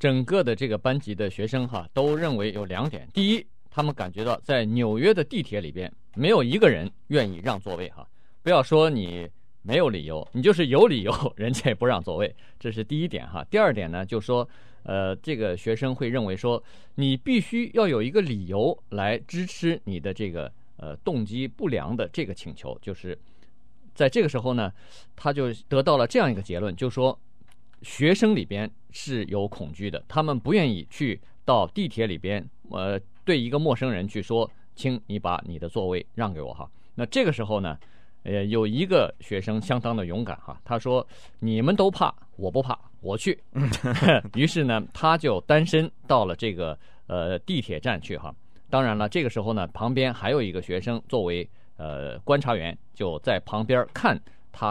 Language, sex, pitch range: Chinese, male, 100-135 Hz